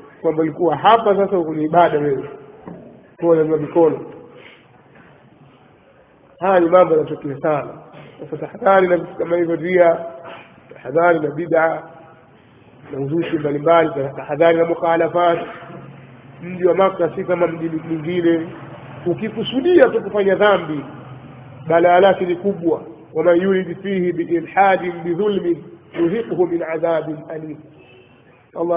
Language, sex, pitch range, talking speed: Swahili, male, 160-190 Hz, 95 wpm